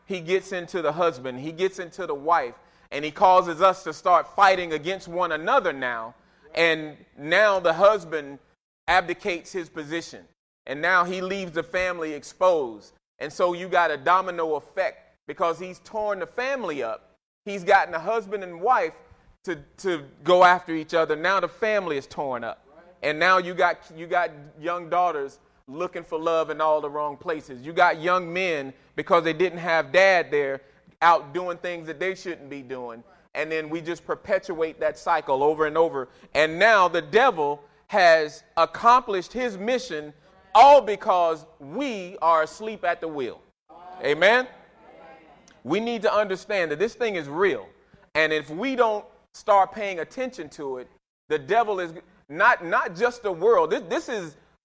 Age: 30-49